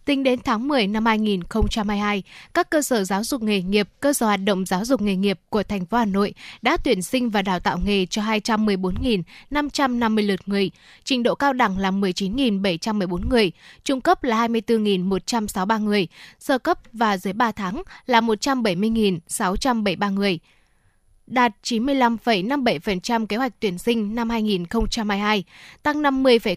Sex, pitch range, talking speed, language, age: female, 200-245 Hz, 150 wpm, Vietnamese, 20-39